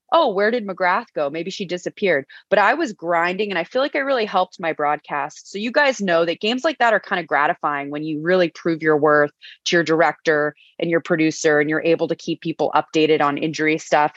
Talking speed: 235 wpm